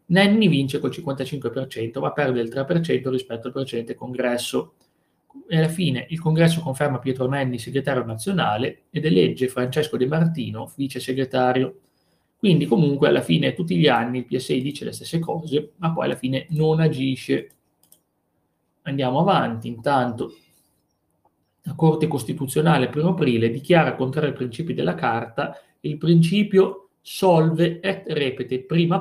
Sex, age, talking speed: male, 30-49, 140 wpm